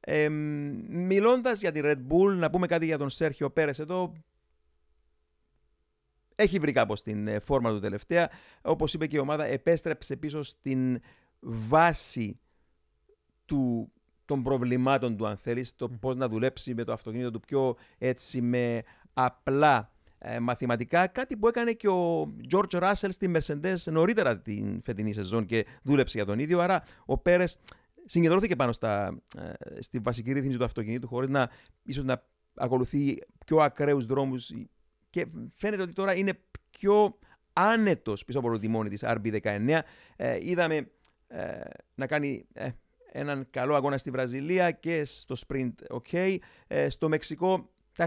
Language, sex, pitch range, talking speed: Greek, male, 120-165 Hz, 135 wpm